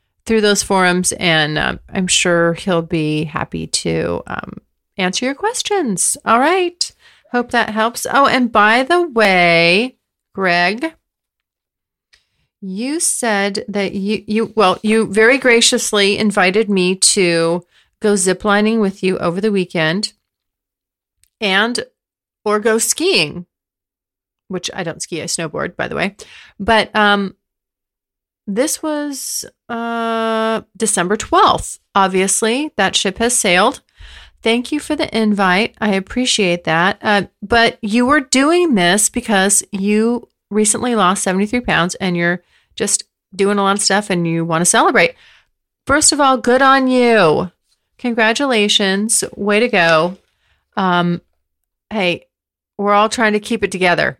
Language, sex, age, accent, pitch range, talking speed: English, female, 30-49, American, 180-230 Hz, 135 wpm